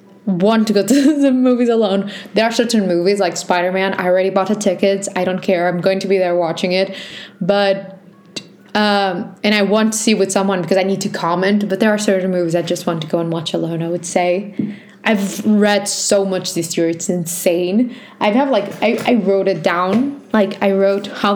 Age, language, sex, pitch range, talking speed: 20-39, English, female, 185-205 Hz, 220 wpm